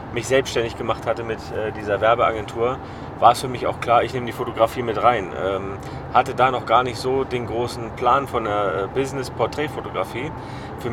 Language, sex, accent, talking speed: German, male, German, 190 wpm